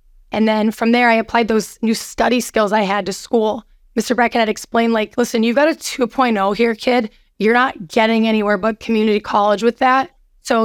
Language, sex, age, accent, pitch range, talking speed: English, female, 20-39, American, 215-240 Hz, 195 wpm